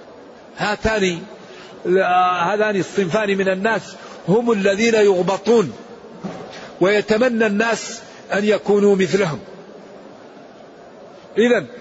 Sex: male